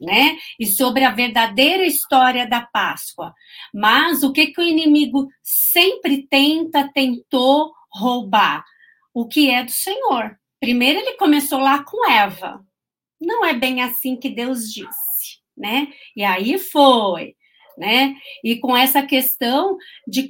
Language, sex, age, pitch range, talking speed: Portuguese, female, 50-69, 235-295 Hz, 135 wpm